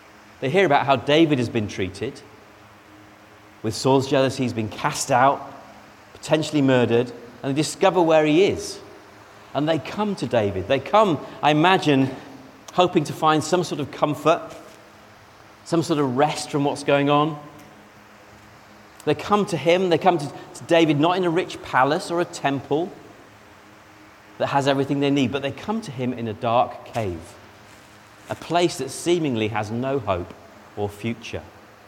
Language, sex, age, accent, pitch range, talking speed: English, male, 40-59, British, 105-140 Hz, 165 wpm